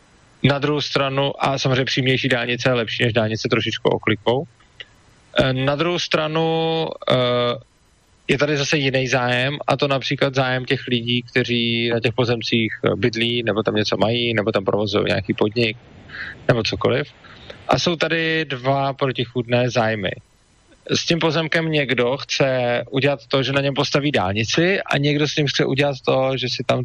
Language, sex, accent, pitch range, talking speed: Czech, male, native, 120-150 Hz, 160 wpm